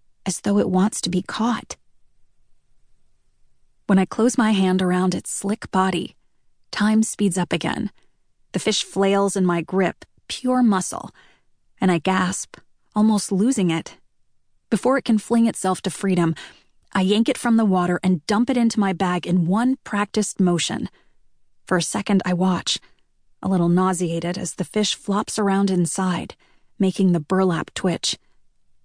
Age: 30-49